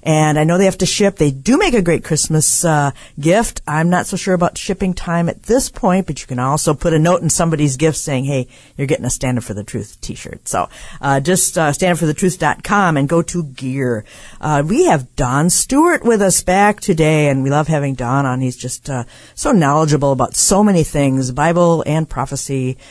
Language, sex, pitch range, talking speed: English, female, 135-185 Hz, 215 wpm